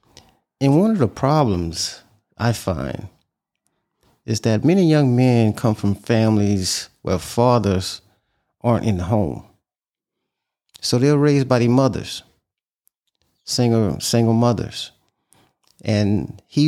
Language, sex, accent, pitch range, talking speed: English, male, American, 105-130 Hz, 115 wpm